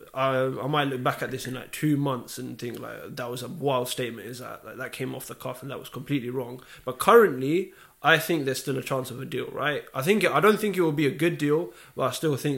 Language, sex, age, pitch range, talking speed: English, male, 20-39, 130-155 Hz, 275 wpm